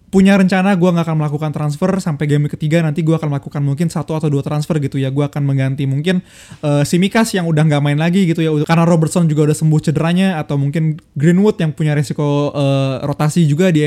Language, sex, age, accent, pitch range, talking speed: Indonesian, male, 20-39, native, 145-170 Hz, 215 wpm